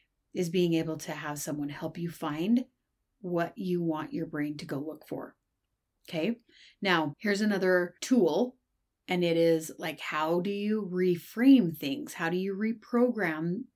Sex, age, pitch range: female, 30-49, 165-200 Hz